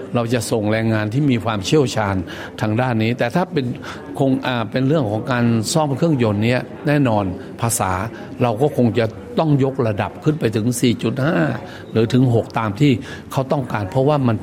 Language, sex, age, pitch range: Thai, male, 60-79, 110-130 Hz